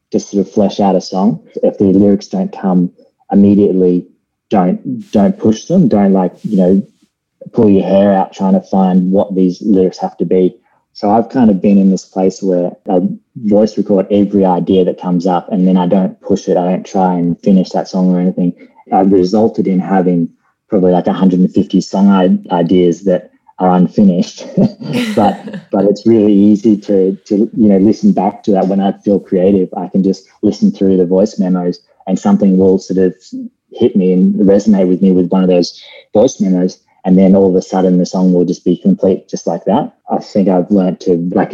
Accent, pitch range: Australian, 90-100 Hz